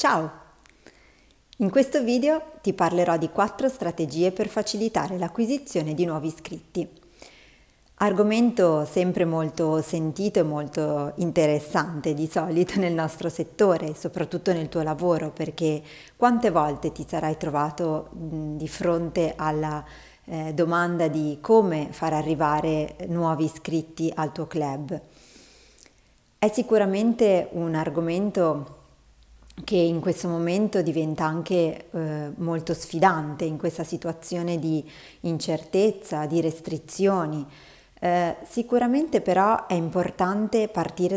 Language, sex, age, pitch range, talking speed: Italian, female, 30-49, 155-190 Hz, 110 wpm